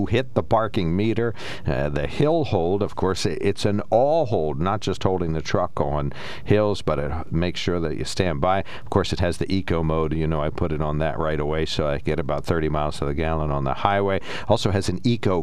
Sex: male